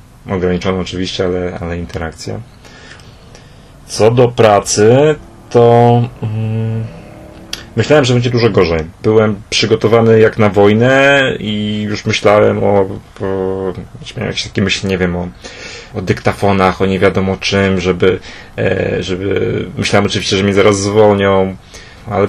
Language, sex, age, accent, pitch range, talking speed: Polish, male, 30-49, native, 95-110 Hz, 130 wpm